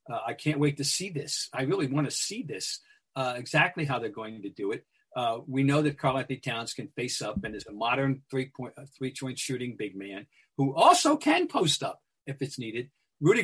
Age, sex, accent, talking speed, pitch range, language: 50-69, male, American, 225 wpm, 115-140 Hz, English